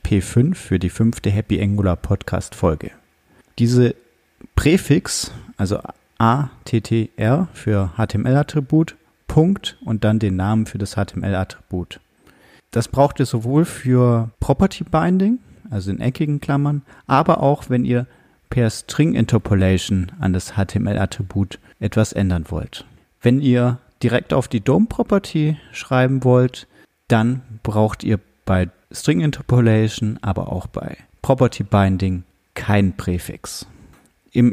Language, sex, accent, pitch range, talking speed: German, male, German, 100-130 Hz, 115 wpm